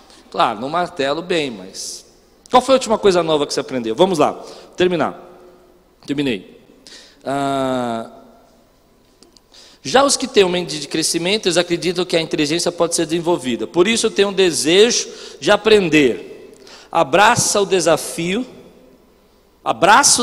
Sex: male